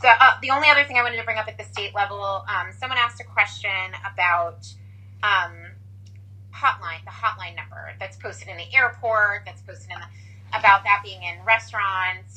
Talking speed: 195 wpm